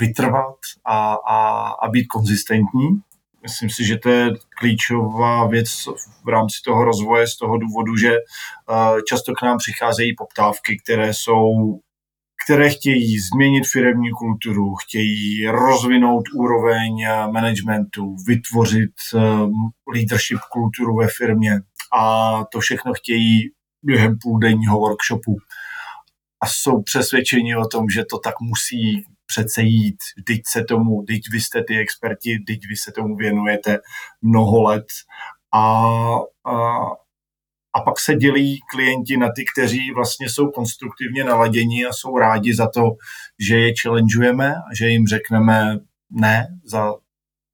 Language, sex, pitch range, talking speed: Slovak, male, 110-120 Hz, 125 wpm